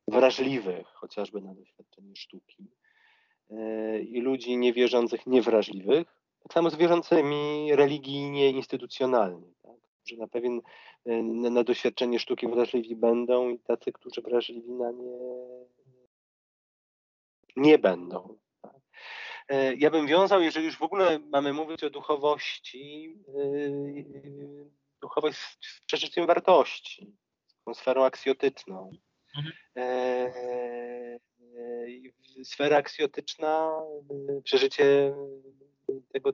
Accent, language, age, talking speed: native, Polish, 40-59, 100 wpm